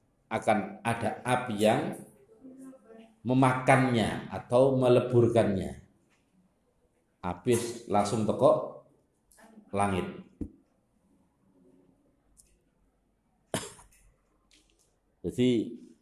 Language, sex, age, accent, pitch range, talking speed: Indonesian, male, 50-69, native, 100-125 Hz, 45 wpm